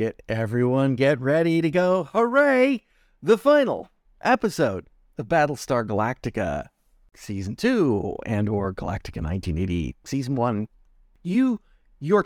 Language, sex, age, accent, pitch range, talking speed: English, male, 40-59, American, 115-180 Hz, 115 wpm